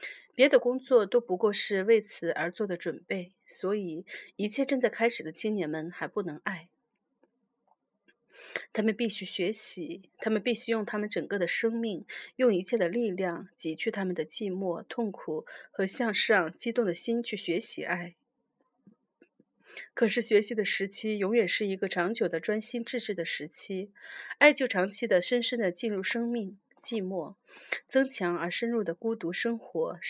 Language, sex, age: Chinese, female, 30-49